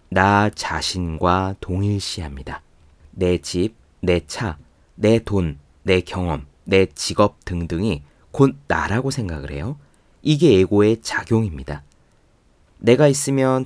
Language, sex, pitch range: Korean, male, 80-120 Hz